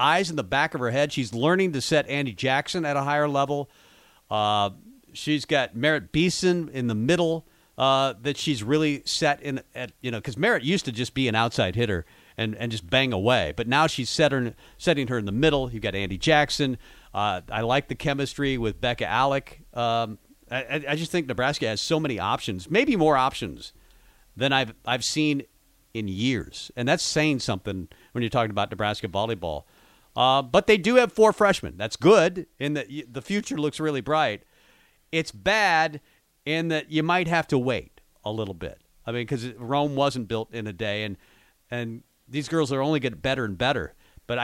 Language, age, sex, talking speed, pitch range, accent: English, 40-59, male, 200 wpm, 115-150 Hz, American